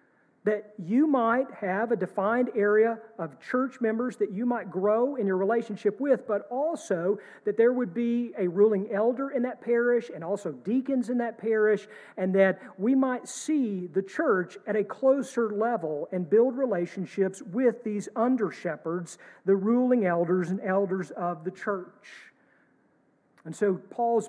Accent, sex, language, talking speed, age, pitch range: American, male, English, 160 wpm, 50-69, 170-230 Hz